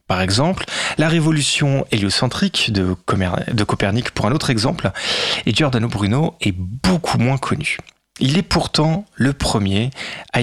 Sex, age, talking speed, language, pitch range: male, 30-49, 150 wpm, French, 100-130 Hz